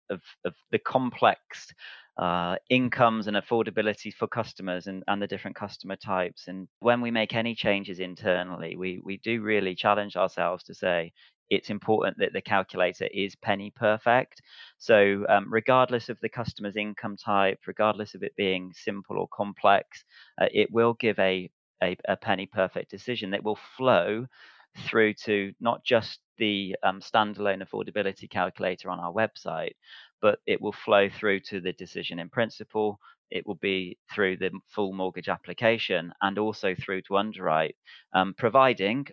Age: 30-49